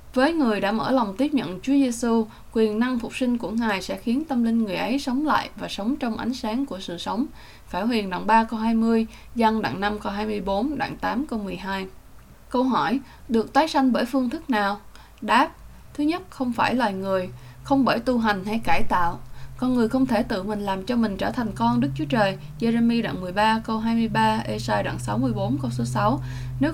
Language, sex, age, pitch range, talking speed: English, female, 10-29, 205-260 Hz, 215 wpm